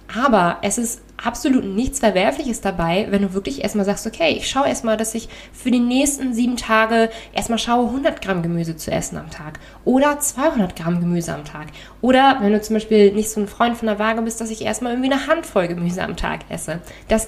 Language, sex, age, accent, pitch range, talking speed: German, female, 20-39, German, 195-245 Hz, 215 wpm